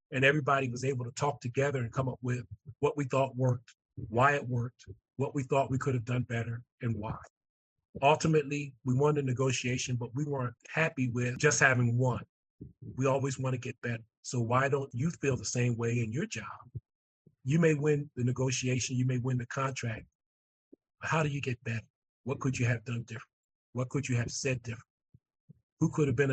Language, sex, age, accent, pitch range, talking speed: English, male, 40-59, American, 120-140 Hz, 205 wpm